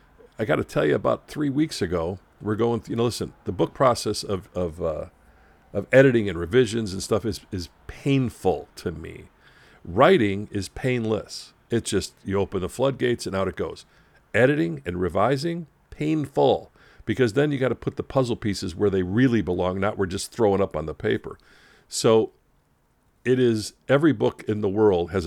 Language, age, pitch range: English, 50-69, 95-125 Hz